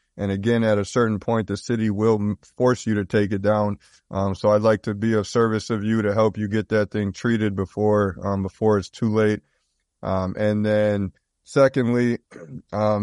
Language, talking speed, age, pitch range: English, 200 wpm, 20-39, 105-120 Hz